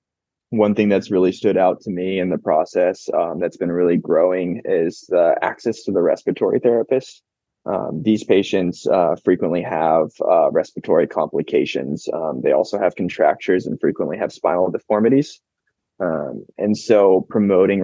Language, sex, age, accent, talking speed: English, male, 20-39, American, 155 wpm